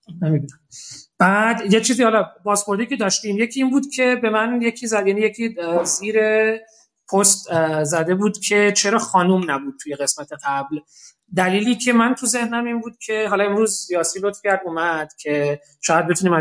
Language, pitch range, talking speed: Persian, 165-215 Hz, 165 wpm